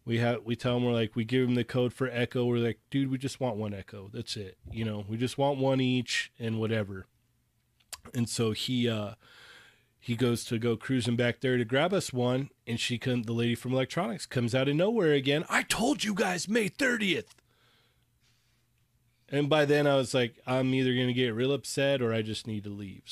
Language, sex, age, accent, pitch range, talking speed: English, male, 30-49, American, 115-130 Hz, 220 wpm